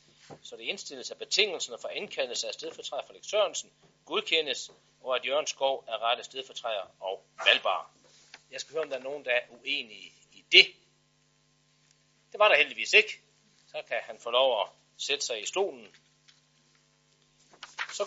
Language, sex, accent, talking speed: Danish, male, native, 165 wpm